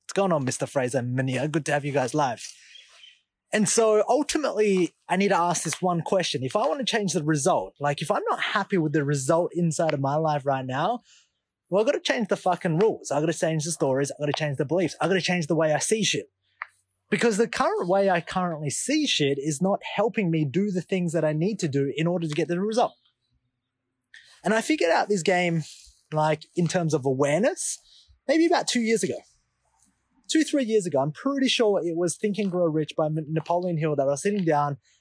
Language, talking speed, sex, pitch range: English, 230 wpm, male, 140-185 Hz